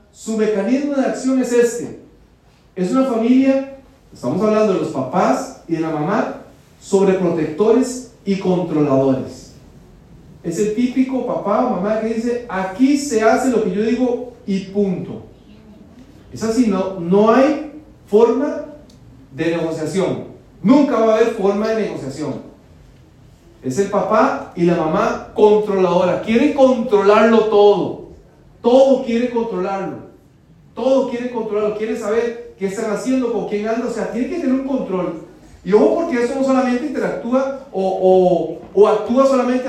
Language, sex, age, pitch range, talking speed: Spanish, male, 40-59, 190-250 Hz, 150 wpm